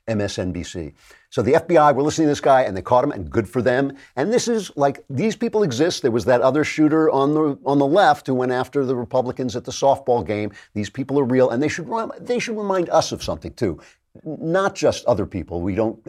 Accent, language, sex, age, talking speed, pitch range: American, English, male, 50-69, 235 wpm, 105-150 Hz